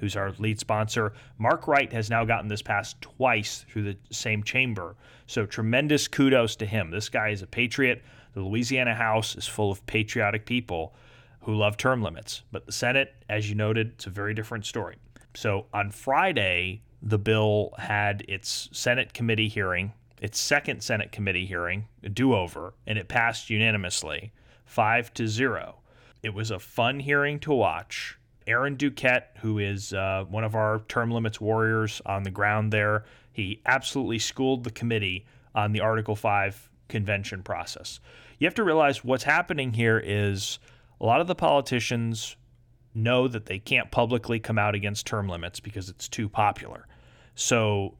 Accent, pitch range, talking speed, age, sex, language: American, 105-125 Hz, 170 wpm, 30-49, male, English